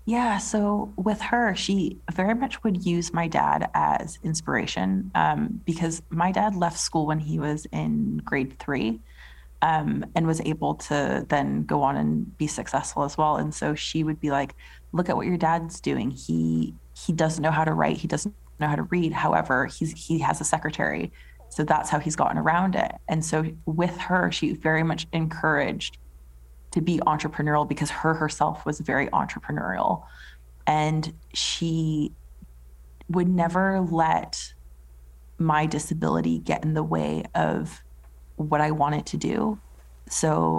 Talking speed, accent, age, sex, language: 165 wpm, American, 20-39, female, English